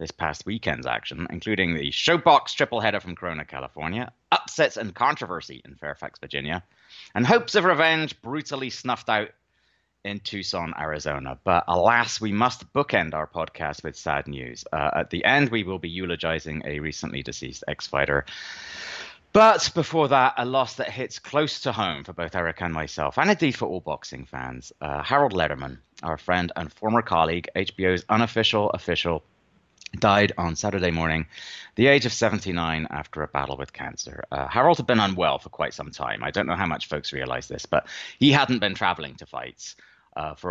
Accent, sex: British, male